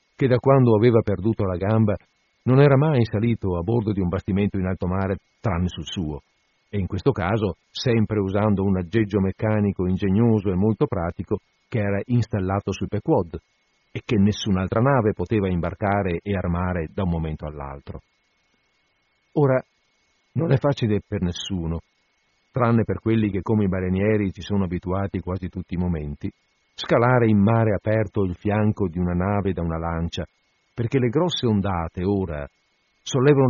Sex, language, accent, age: male, Italian, native, 50-69